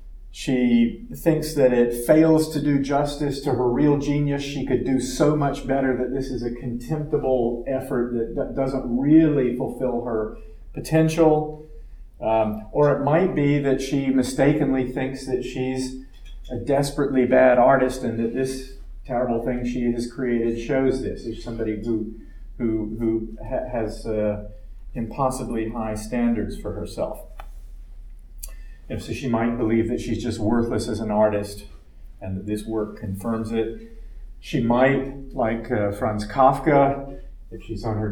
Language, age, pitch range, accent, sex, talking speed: English, 40-59, 105-130 Hz, American, male, 145 wpm